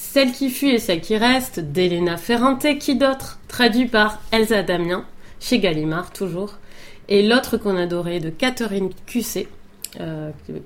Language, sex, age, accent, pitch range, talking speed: French, female, 30-49, French, 175-220 Hz, 145 wpm